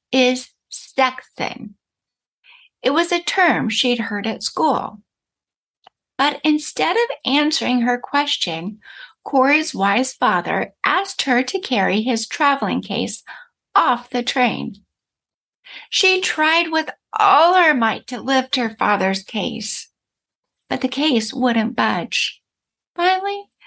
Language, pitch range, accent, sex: English, 225-320 Hz, American, female